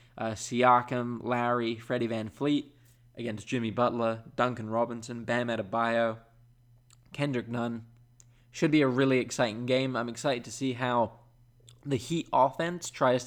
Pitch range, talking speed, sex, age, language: 115-130 Hz, 135 wpm, male, 20-39, English